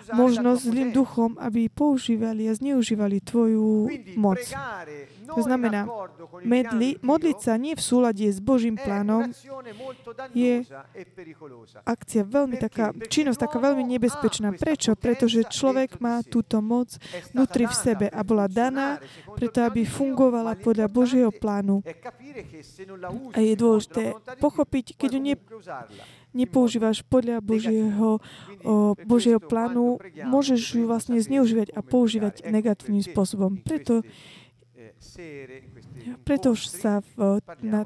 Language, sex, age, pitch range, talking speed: Slovak, female, 20-39, 210-255 Hz, 110 wpm